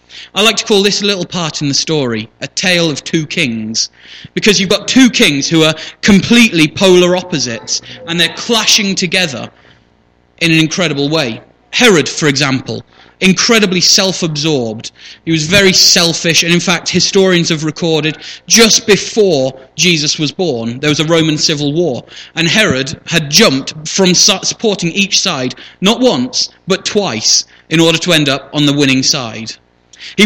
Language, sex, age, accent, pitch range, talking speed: English, male, 30-49, British, 135-180 Hz, 160 wpm